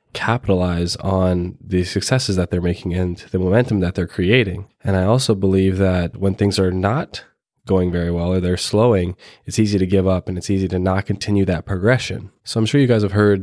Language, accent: English, American